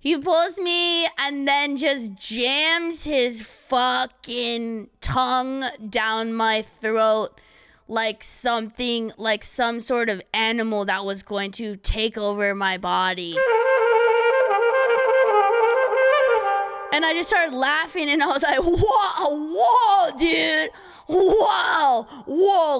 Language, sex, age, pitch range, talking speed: English, female, 20-39, 210-335 Hz, 110 wpm